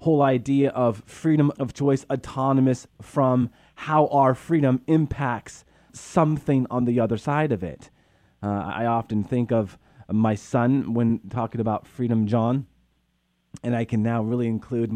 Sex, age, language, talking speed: male, 30-49, English, 150 wpm